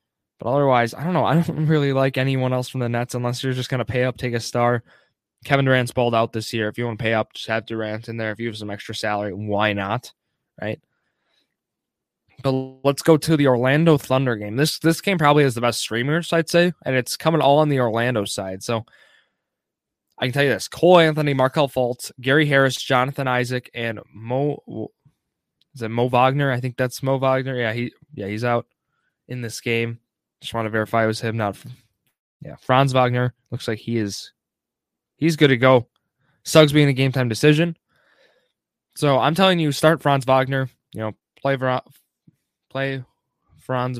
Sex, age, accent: male, 20-39, American